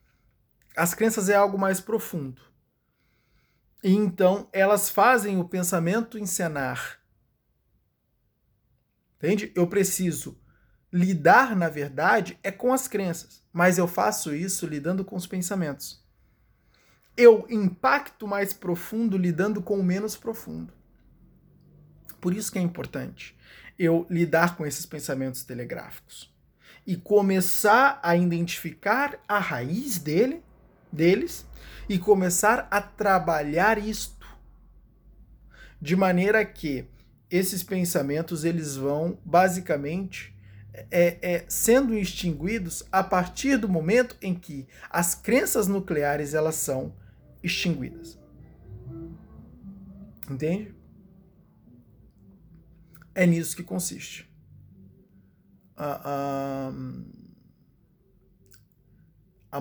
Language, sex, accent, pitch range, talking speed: Portuguese, male, Brazilian, 160-200 Hz, 95 wpm